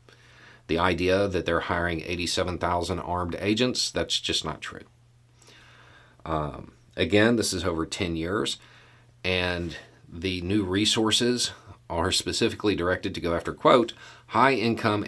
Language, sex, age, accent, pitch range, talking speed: English, male, 40-59, American, 85-120 Hz, 125 wpm